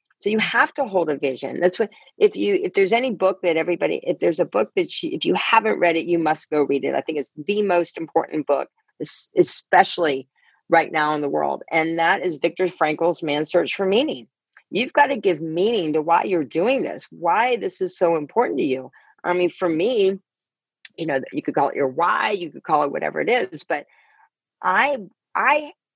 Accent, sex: American, female